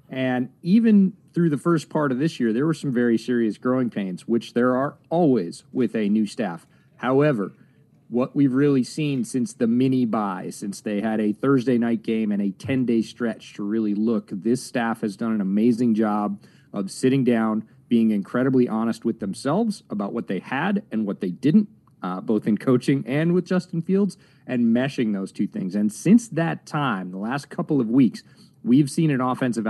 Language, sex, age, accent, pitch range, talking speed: English, male, 40-59, American, 110-150 Hz, 190 wpm